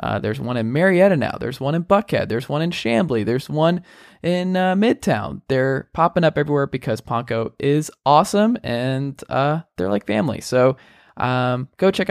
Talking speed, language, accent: 180 wpm, English, American